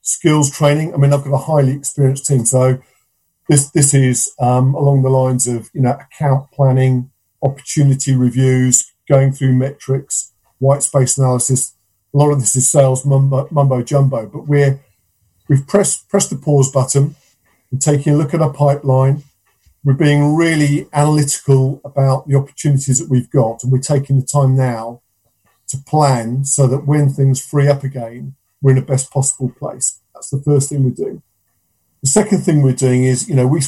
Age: 50-69